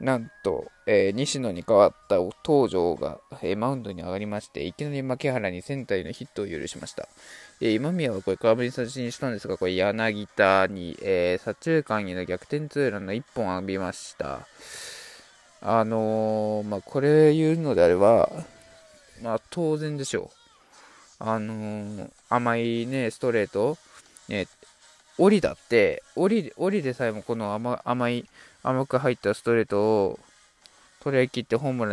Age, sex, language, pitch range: 20-39, male, Japanese, 105-140 Hz